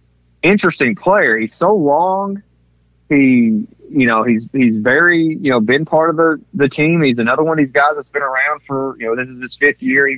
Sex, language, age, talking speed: male, English, 30-49, 220 wpm